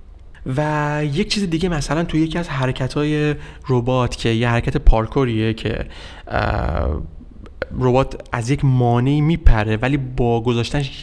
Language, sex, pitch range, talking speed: Persian, male, 110-140 Hz, 125 wpm